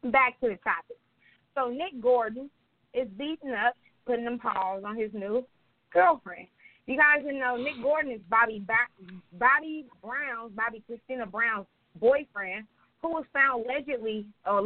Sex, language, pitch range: female, English, 205-255 Hz